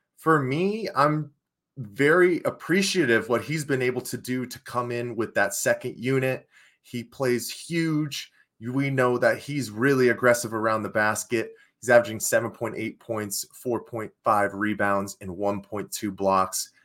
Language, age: English, 30-49